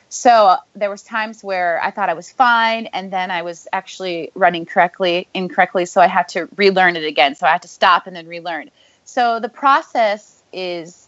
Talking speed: 205 wpm